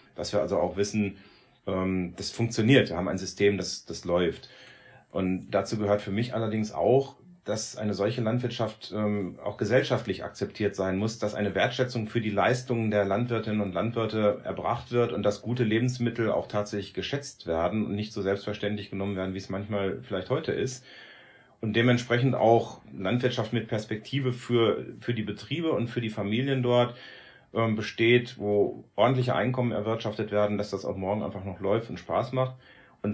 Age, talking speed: 30-49, 170 wpm